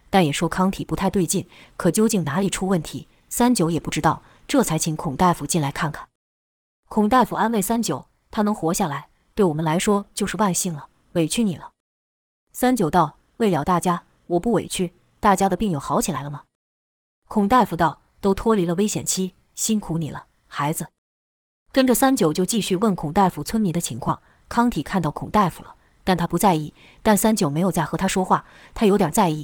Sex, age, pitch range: female, 20-39, 155-210 Hz